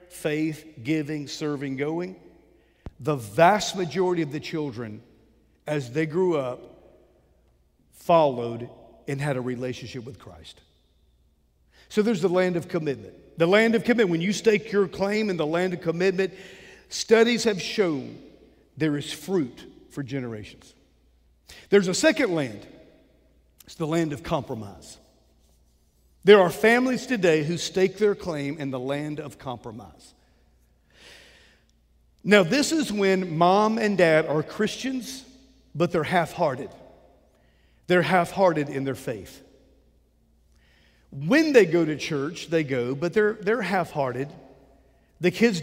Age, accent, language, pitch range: 50-69, American, English, 125-190 Hz